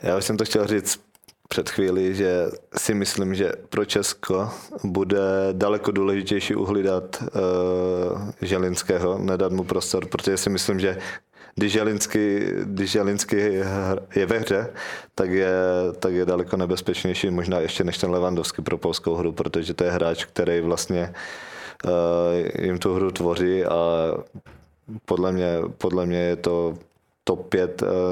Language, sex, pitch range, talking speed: Czech, male, 85-100 Hz, 140 wpm